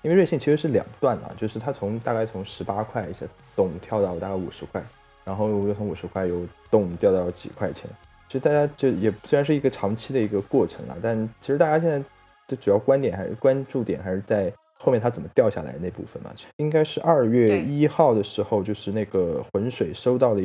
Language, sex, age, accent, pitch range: Chinese, male, 20-39, native, 95-120 Hz